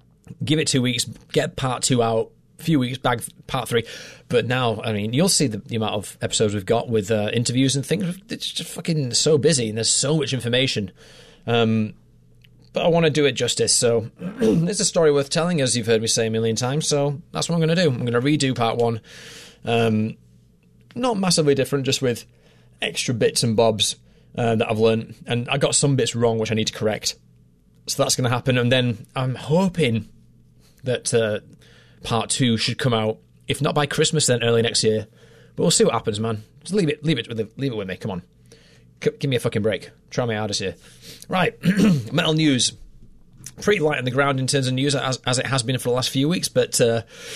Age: 30-49